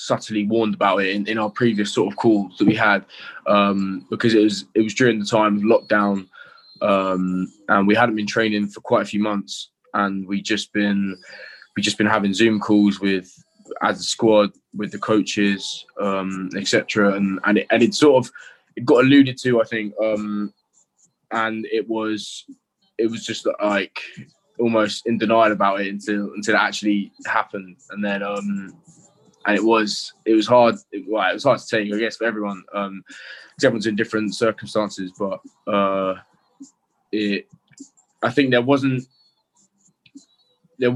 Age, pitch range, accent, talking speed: 20-39, 100-120 Hz, British, 175 wpm